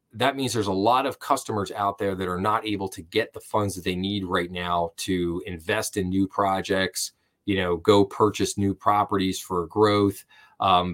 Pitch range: 95-125 Hz